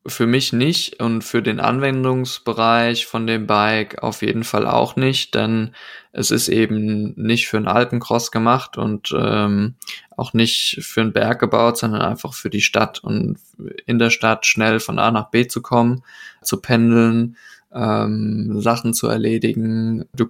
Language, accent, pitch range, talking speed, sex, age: German, German, 115-130 Hz, 165 wpm, male, 20-39